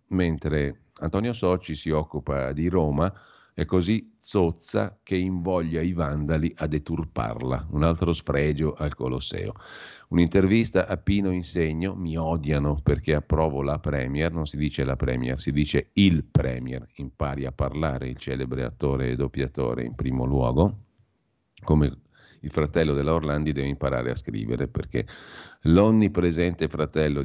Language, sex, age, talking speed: Italian, male, 50-69, 140 wpm